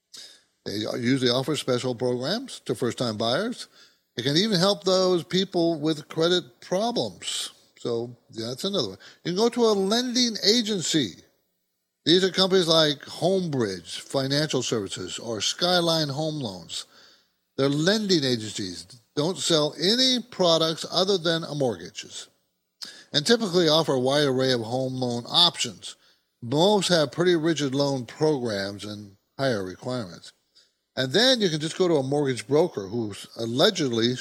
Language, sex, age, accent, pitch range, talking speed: English, male, 60-79, American, 120-175 Hz, 140 wpm